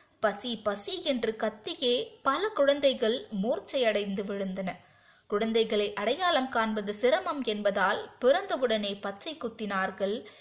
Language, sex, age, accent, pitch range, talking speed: Tamil, female, 20-39, native, 210-280 Hz, 90 wpm